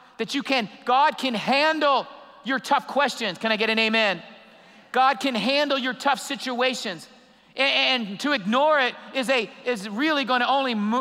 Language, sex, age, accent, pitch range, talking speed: English, male, 50-69, American, 240-320 Hz, 170 wpm